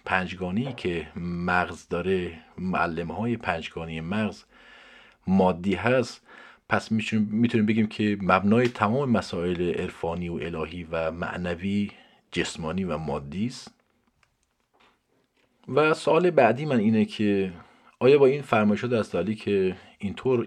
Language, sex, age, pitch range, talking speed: Persian, male, 40-59, 90-110 Hz, 115 wpm